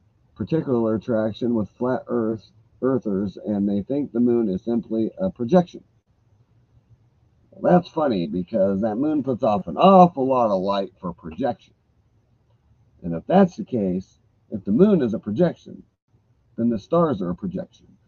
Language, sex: English, male